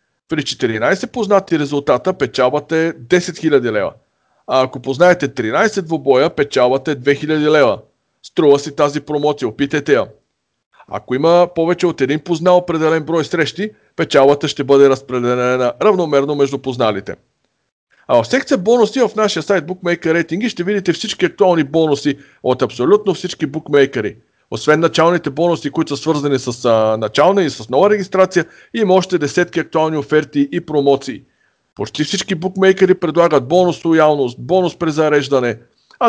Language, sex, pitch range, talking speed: Bulgarian, male, 140-180 Hz, 145 wpm